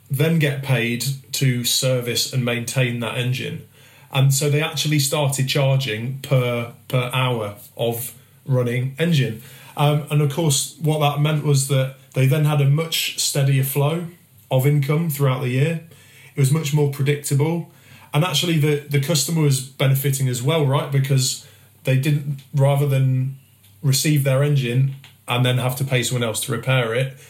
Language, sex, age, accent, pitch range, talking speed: English, male, 30-49, British, 125-145 Hz, 165 wpm